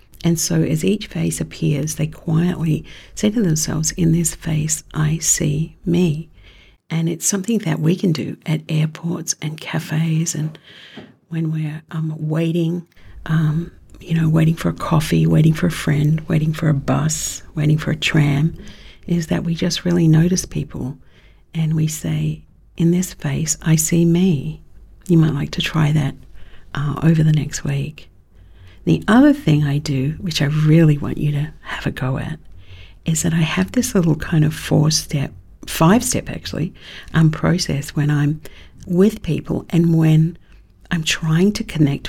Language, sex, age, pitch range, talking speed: English, female, 50-69, 145-165 Hz, 165 wpm